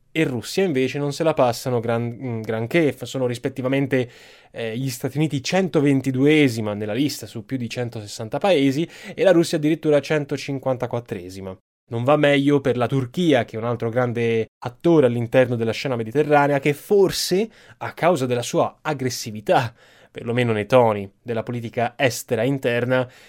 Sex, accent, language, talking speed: male, native, Italian, 145 wpm